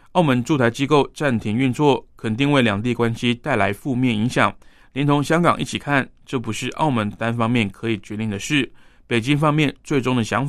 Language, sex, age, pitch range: Chinese, male, 20-39, 110-135 Hz